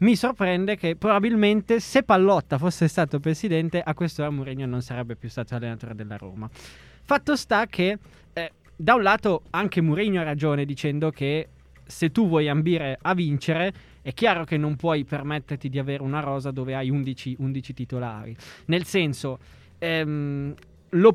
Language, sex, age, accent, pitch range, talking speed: Italian, male, 20-39, native, 140-185 Hz, 165 wpm